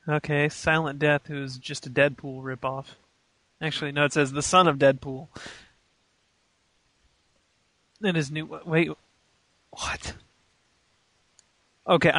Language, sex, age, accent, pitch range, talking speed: English, male, 30-49, American, 140-170 Hz, 115 wpm